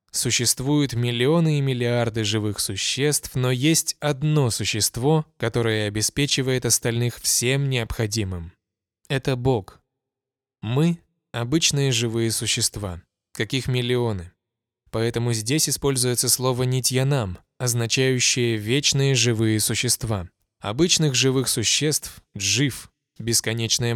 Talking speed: 100 wpm